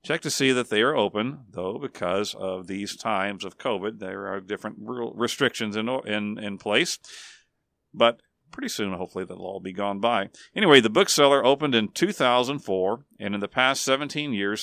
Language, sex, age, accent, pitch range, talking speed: English, male, 50-69, American, 105-130 Hz, 175 wpm